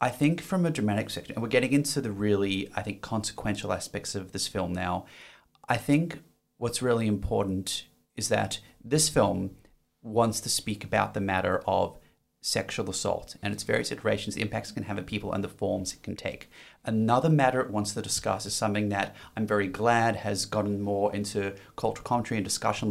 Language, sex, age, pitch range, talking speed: English, male, 30-49, 100-120 Hz, 195 wpm